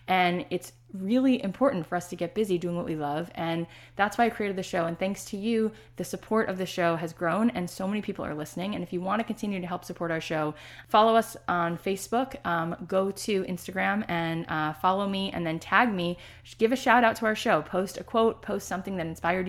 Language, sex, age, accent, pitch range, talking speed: English, female, 20-39, American, 170-210 Hz, 240 wpm